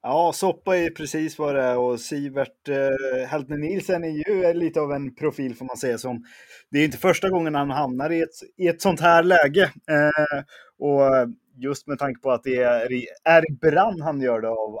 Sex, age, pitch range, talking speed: male, 20-39, 130-160 Hz, 205 wpm